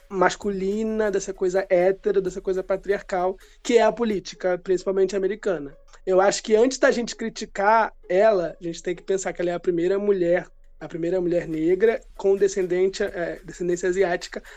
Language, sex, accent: Portuguese, male, Brazilian